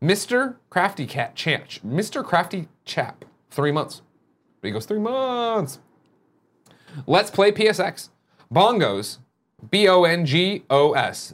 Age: 30-49